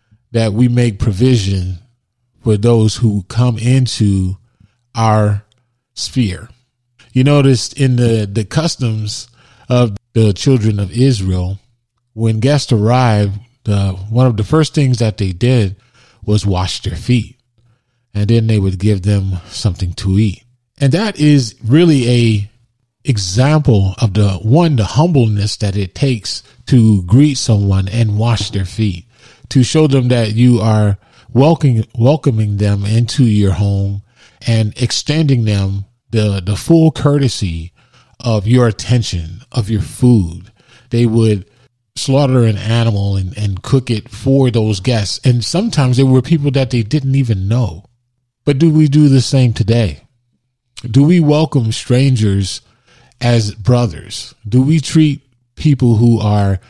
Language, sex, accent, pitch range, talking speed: English, male, American, 105-130 Hz, 140 wpm